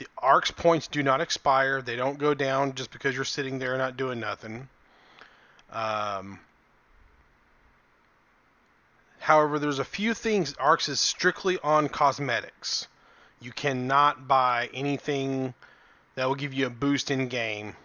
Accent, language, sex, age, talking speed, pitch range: American, English, male, 30-49, 140 wpm, 120-145 Hz